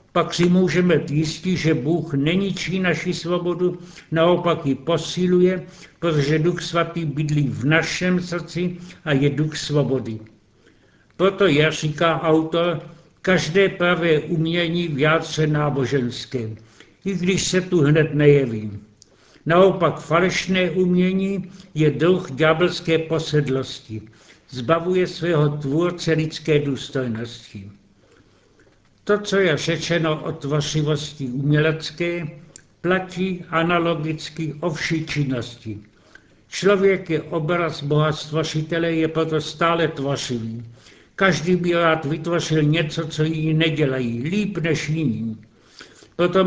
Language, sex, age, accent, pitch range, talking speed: Czech, male, 70-89, native, 145-175 Hz, 105 wpm